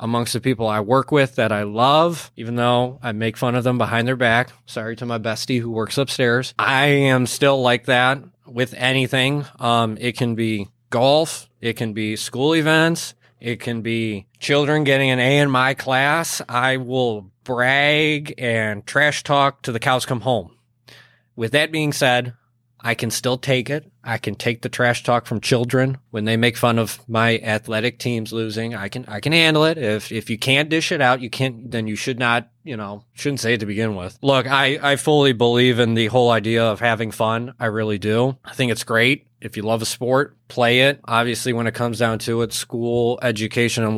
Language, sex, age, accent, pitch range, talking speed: English, male, 20-39, American, 115-130 Hz, 210 wpm